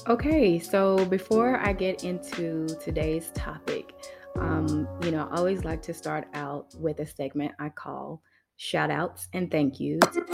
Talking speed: 155 wpm